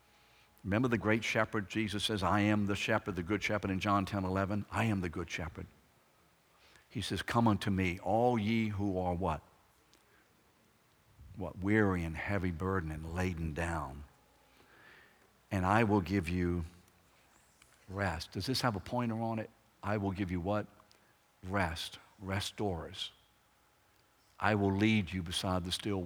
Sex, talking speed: male, 155 wpm